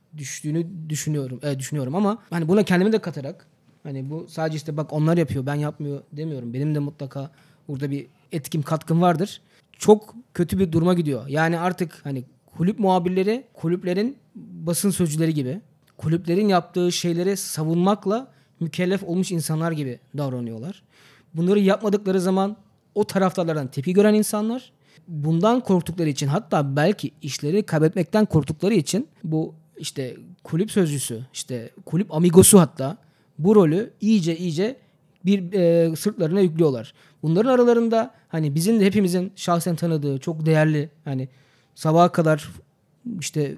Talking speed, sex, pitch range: 135 wpm, male, 150-190 Hz